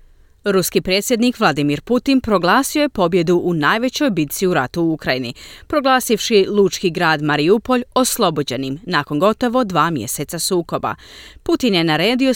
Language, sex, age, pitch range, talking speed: Croatian, female, 30-49, 145-240 Hz, 130 wpm